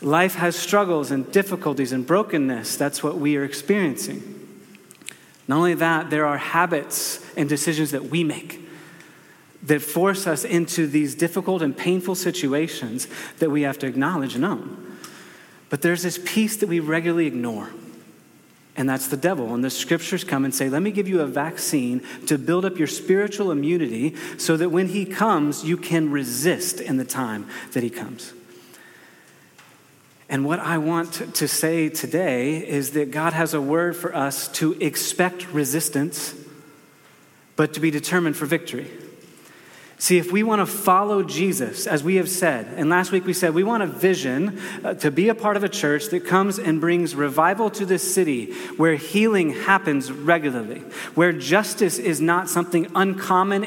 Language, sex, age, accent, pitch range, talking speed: English, male, 30-49, American, 150-185 Hz, 170 wpm